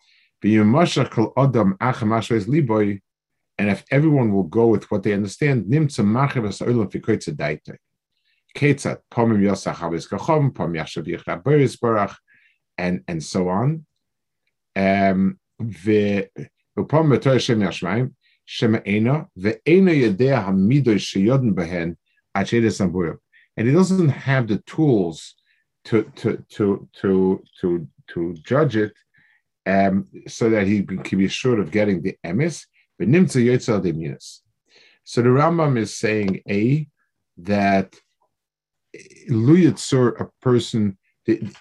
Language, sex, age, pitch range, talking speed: English, male, 50-69, 100-135 Hz, 115 wpm